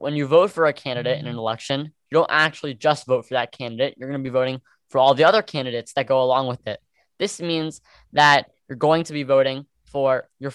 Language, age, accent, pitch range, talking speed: English, 10-29, American, 135-160 Hz, 240 wpm